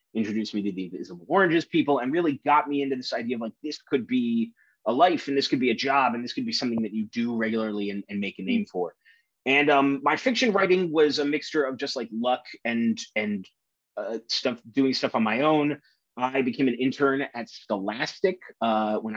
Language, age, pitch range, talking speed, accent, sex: English, 30-49, 110-150 Hz, 220 wpm, American, male